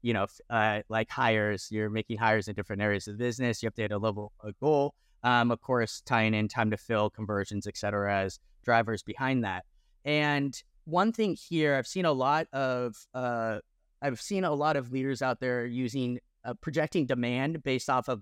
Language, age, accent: English, 30-49, American